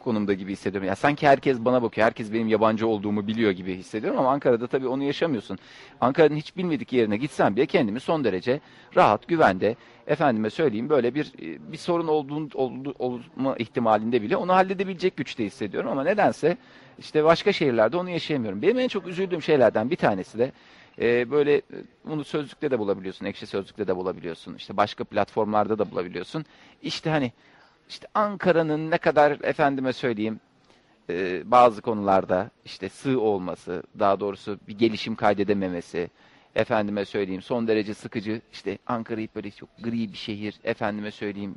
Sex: male